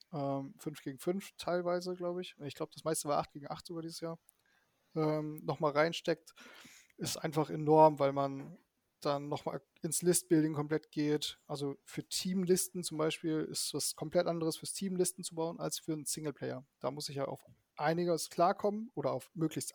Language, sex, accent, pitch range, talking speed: German, male, German, 150-180 Hz, 175 wpm